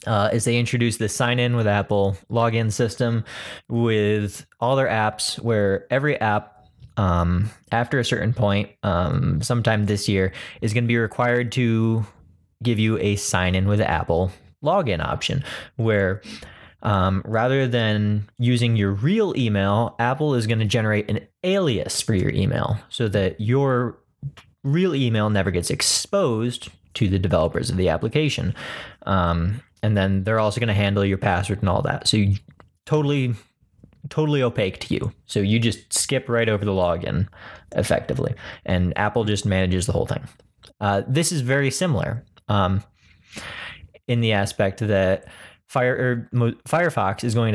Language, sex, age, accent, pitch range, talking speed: English, male, 20-39, American, 100-125 Hz, 155 wpm